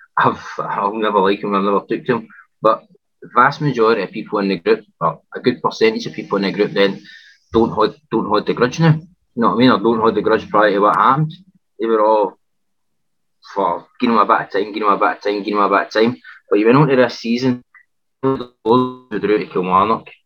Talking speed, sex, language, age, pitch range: 225 wpm, male, English, 20-39, 95-115 Hz